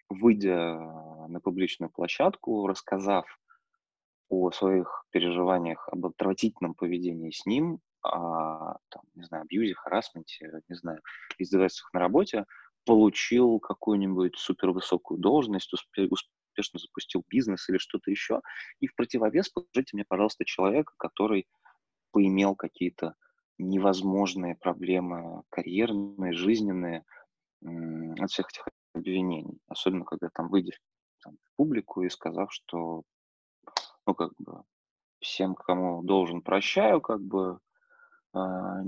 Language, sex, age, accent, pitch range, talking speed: Russian, male, 20-39, native, 85-100 Hz, 110 wpm